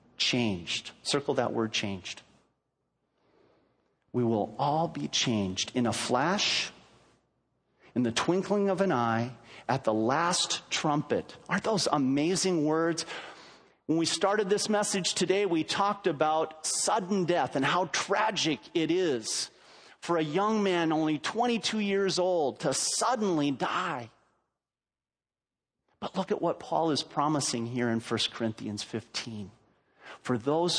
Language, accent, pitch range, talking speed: English, American, 115-175 Hz, 130 wpm